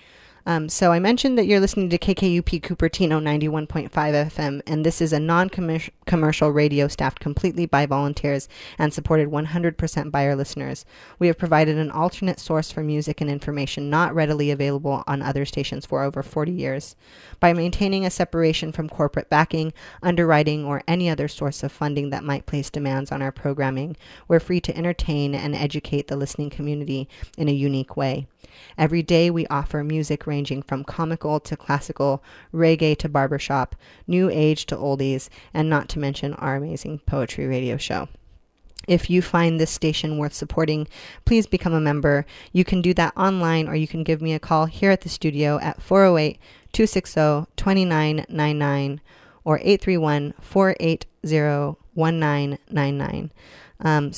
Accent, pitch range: American, 145-170 Hz